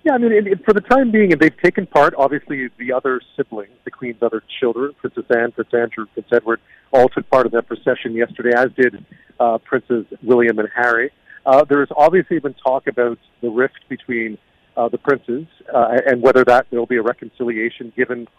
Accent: American